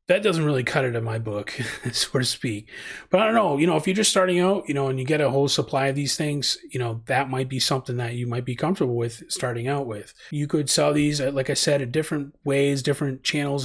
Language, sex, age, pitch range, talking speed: English, male, 30-49, 130-160 Hz, 265 wpm